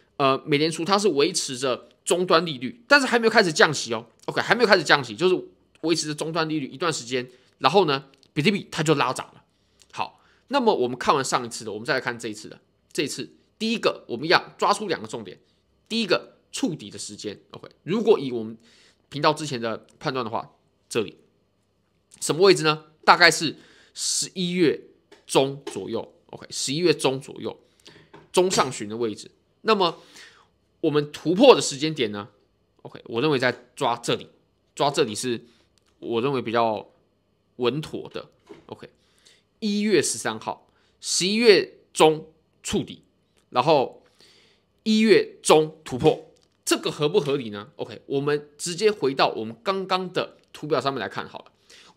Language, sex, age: Chinese, male, 20-39